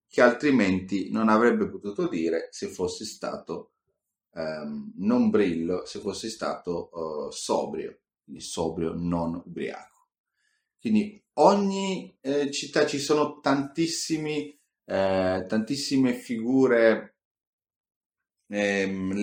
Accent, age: native, 30-49